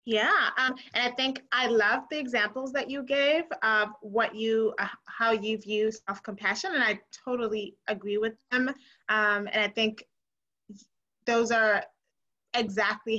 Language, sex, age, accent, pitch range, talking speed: English, female, 20-39, American, 210-255 Hz, 150 wpm